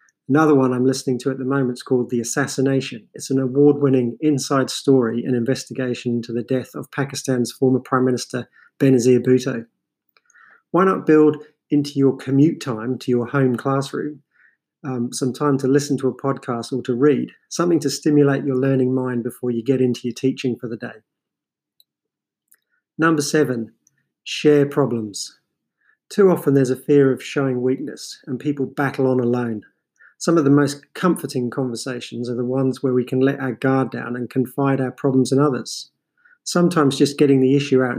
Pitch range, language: 125-145 Hz, English